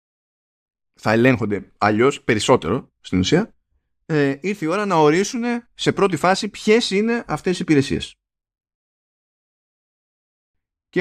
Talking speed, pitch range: 115 wpm, 105-150 Hz